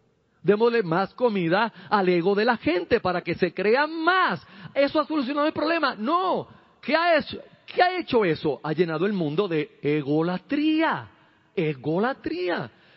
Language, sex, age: Spanish, male, 40-59